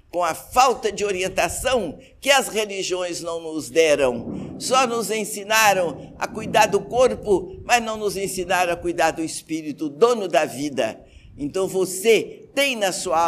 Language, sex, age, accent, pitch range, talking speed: Portuguese, male, 60-79, Brazilian, 165-240 Hz, 155 wpm